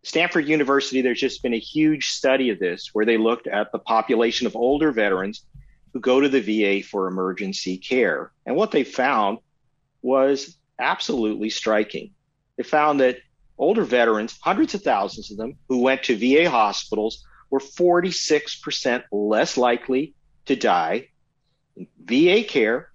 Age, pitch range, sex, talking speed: 50-69, 125-155 Hz, male, 150 wpm